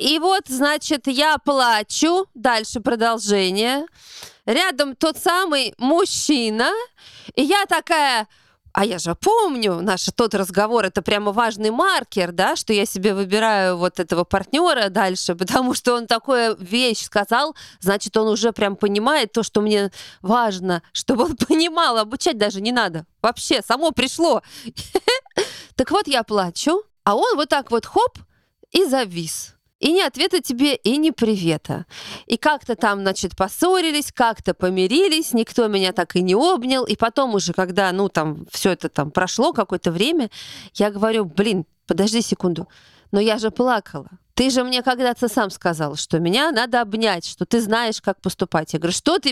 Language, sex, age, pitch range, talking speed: Russian, female, 20-39, 195-285 Hz, 160 wpm